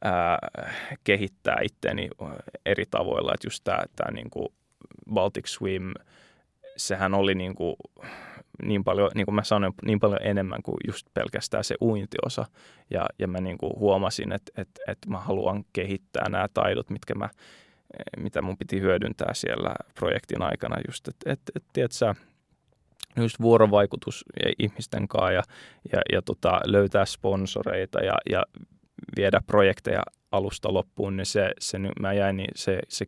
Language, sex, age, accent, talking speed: Finnish, male, 20-39, native, 140 wpm